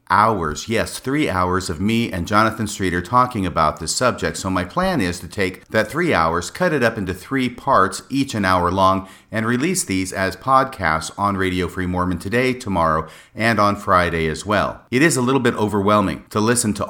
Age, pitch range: 40-59, 95-115 Hz